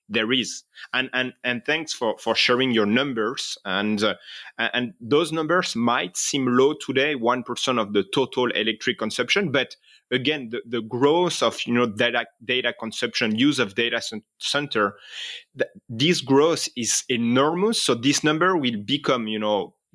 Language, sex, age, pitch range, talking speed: English, male, 30-49, 115-145 Hz, 160 wpm